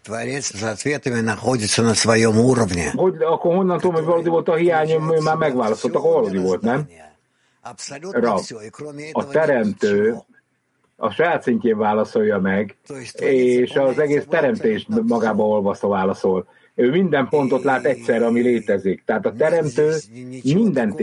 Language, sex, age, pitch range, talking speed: English, male, 60-79, 120-155 Hz, 110 wpm